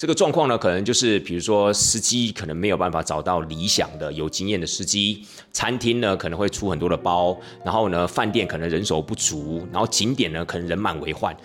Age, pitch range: 30-49, 85-120 Hz